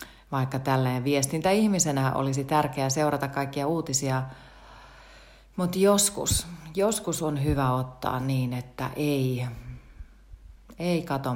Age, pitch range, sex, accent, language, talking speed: 40-59, 125-155 Hz, female, native, Finnish, 105 wpm